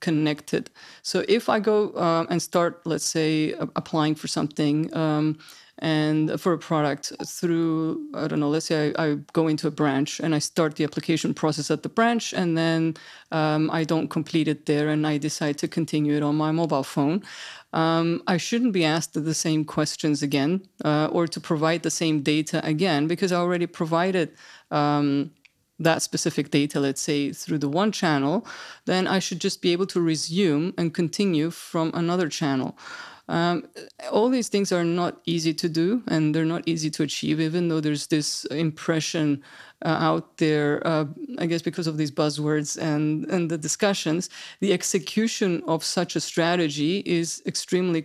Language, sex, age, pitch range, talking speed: English, female, 30-49, 155-175 Hz, 180 wpm